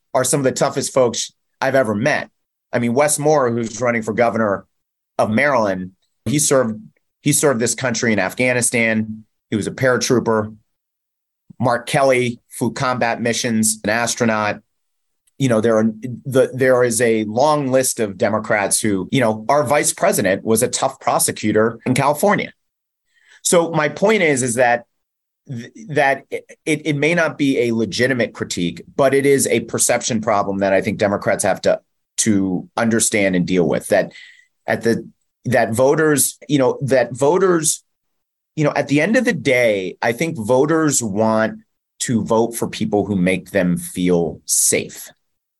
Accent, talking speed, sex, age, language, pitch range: American, 160 wpm, male, 30-49, English, 110-140 Hz